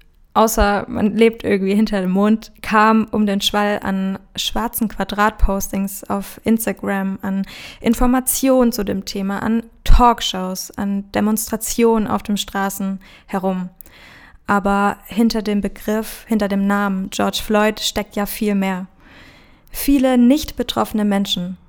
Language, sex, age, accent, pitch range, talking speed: German, female, 20-39, German, 200-230 Hz, 125 wpm